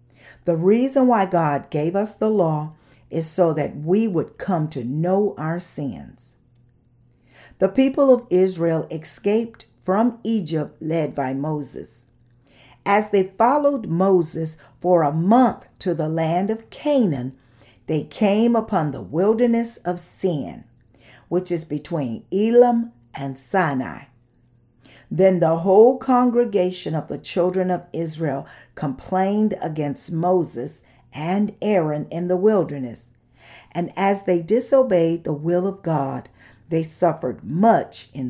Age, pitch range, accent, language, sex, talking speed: 50-69, 140-200 Hz, American, English, female, 130 wpm